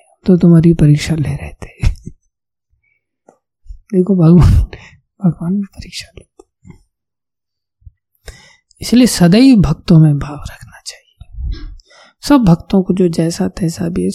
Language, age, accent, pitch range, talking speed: Hindi, 20-39, native, 135-190 Hz, 100 wpm